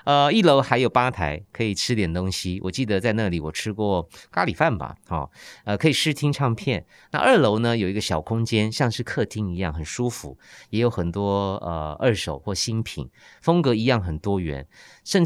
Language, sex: Chinese, male